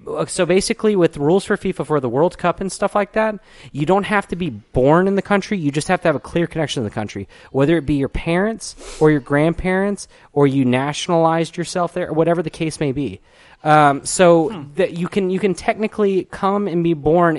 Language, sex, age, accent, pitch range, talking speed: English, male, 30-49, American, 130-170 Hz, 225 wpm